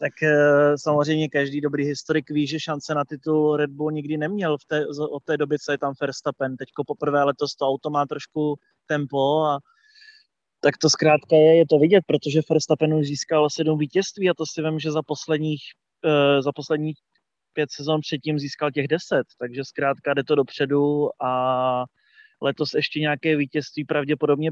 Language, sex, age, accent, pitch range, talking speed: Czech, male, 20-39, native, 145-160 Hz, 175 wpm